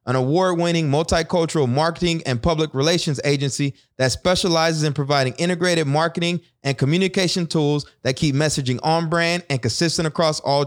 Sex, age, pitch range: male, 20-39, 130-170 Hz